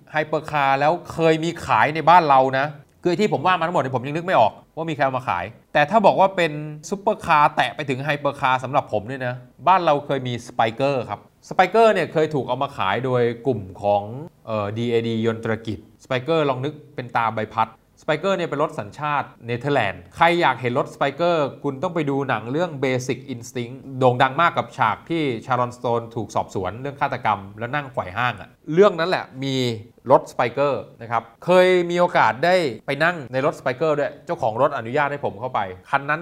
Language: Thai